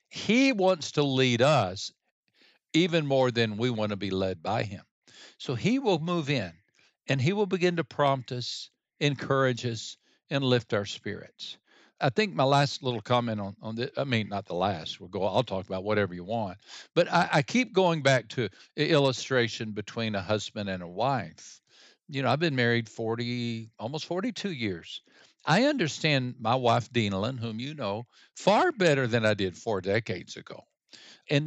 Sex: male